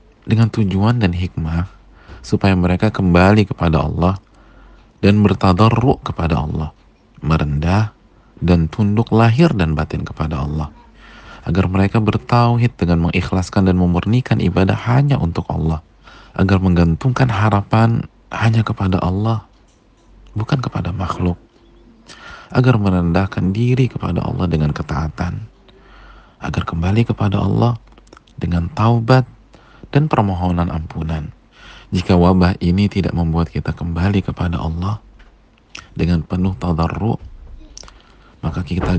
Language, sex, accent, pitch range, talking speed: Indonesian, male, native, 85-110 Hz, 110 wpm